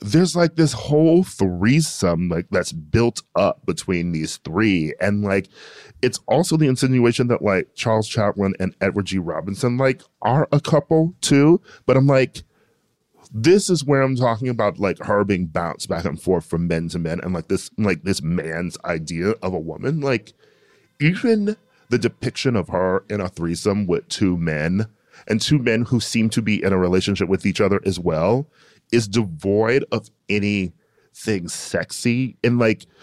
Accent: American